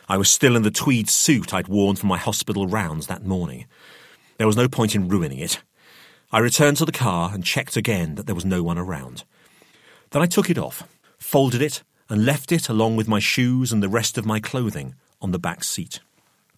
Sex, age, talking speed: male, 40-59, 215 wpm